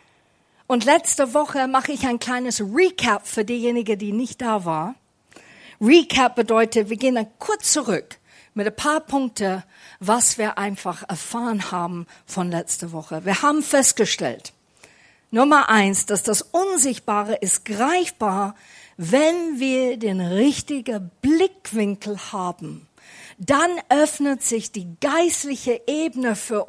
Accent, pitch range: German, 205-270 Hz